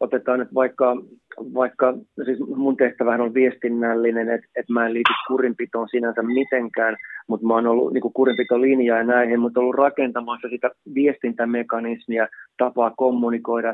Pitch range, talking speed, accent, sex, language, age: 115-125 Hz, 150 wpm, native, male, Finnish, 30-49